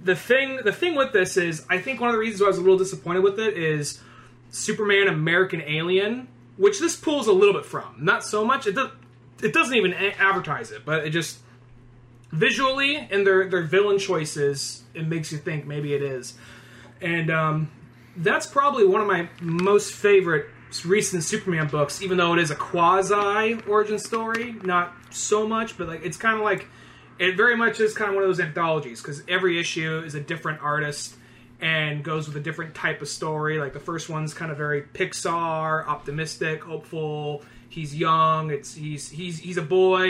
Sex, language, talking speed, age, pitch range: male, English, 195 wpm, 20-39, 150-190 Hz